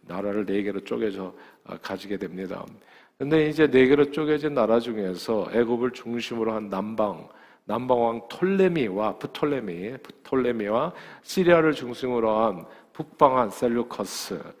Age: 40-59